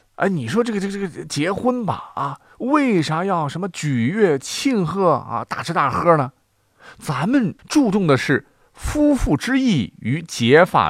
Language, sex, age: Chinese, male, 50-69